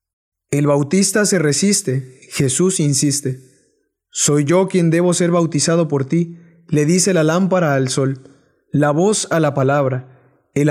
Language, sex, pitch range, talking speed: Spanish, male, 140-180 Hz, 145 wpm